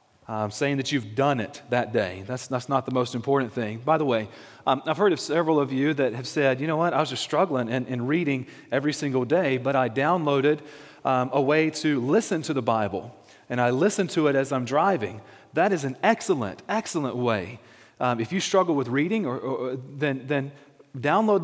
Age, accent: 30-49, American